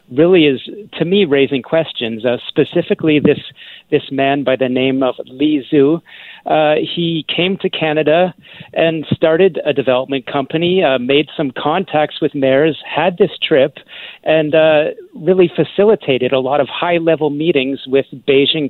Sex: male